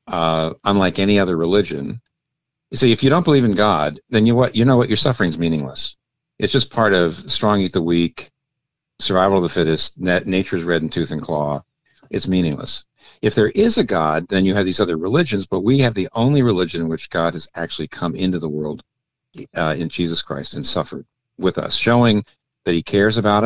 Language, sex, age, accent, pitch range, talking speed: English, male, 50-69, American, 85-105 Hz, 210 wpm